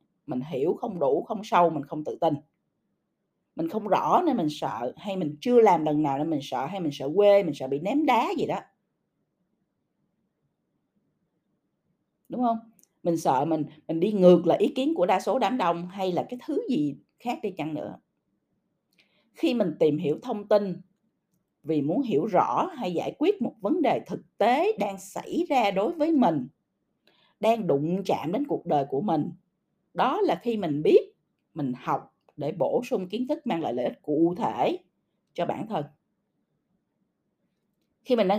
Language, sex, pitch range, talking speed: Vietnamese, female, 155-230 Hz, 185 wpm